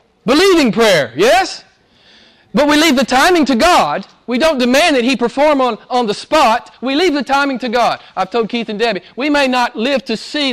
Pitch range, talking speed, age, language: 170-275 Hz, 210 wpm, 40-59, English